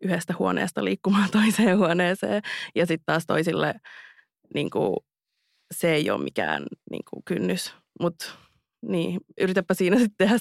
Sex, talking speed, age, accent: female, 120 wpm, 20-39, native